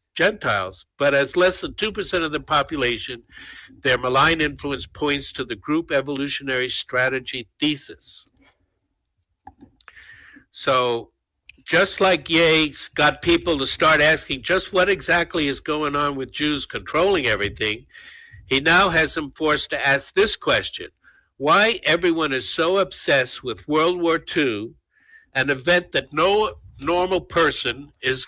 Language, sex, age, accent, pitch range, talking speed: English, male, 60-79, American, 135-180 Hz, 135 wpm